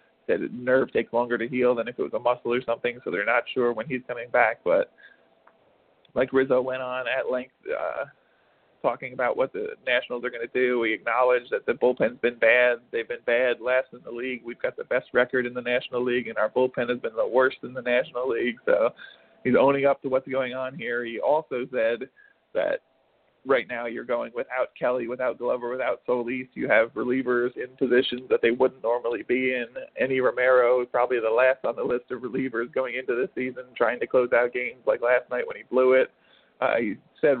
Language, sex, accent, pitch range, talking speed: English, male, American, 125-135 Hz, 220 wpm